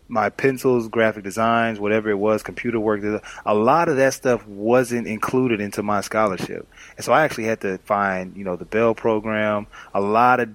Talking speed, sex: 195 wpm, male